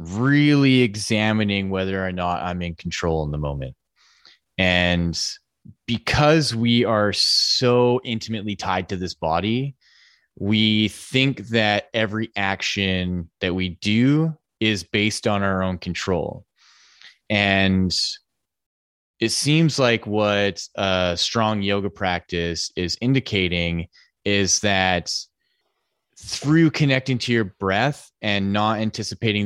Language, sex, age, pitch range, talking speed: English, male, 20-39, 95-115 Hz, 115 wpm